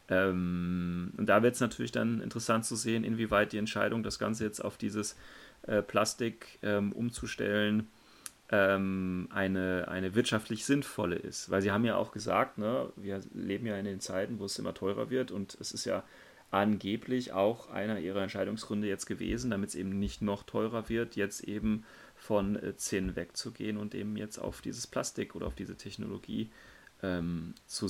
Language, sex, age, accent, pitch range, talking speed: German, male, 30-49, German, 95-110 Hz, 170 wpm